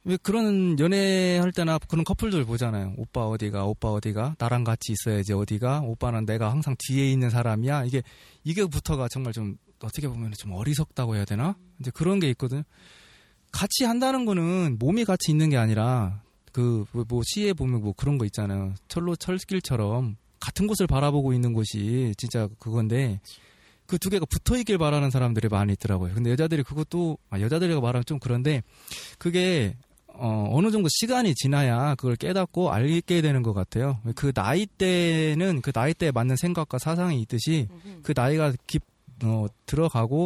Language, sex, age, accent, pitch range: Korean, male, 20-39, native, 115-175 Hz